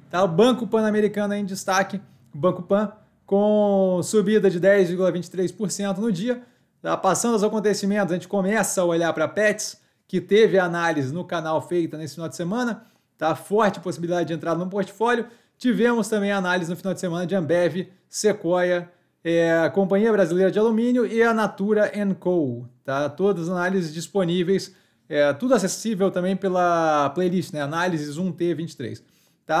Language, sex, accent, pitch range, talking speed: Portuguese, male, Brazilian, 165-205 Hz, 160 wpm